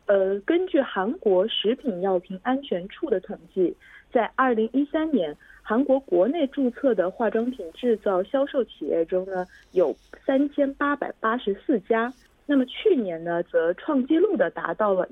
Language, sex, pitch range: Korean, female, 185-285 Hz